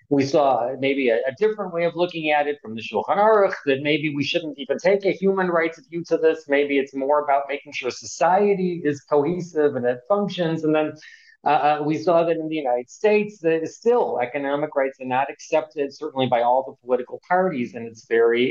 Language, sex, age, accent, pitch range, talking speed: English, male, 40-59, American, 135-180 Hz, 215 wpm